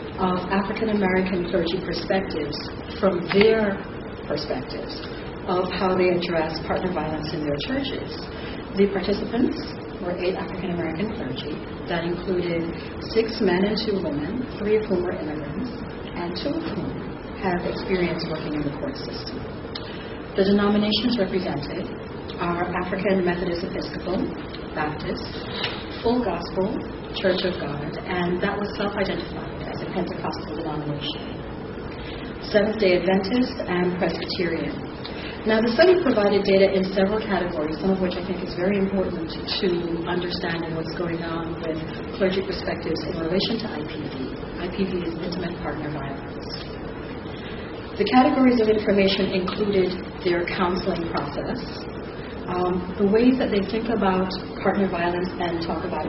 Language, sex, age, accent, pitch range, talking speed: English, female, 40-59, American, 170-200 Hz, 130 wpm